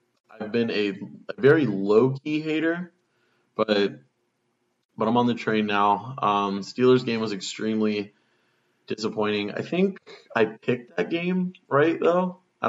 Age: 20-39